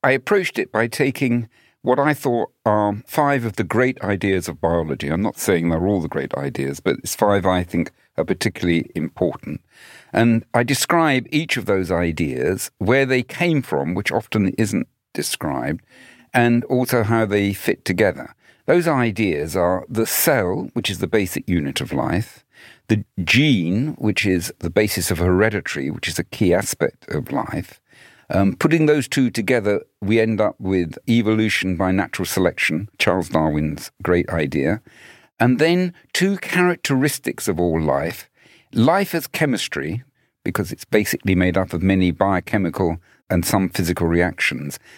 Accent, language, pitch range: British, English, 90-125 Hz